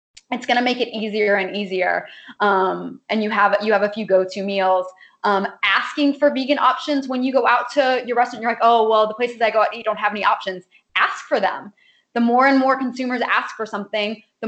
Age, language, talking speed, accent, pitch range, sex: 20-39, English, 230 wpm, American, 200-255 Hz, female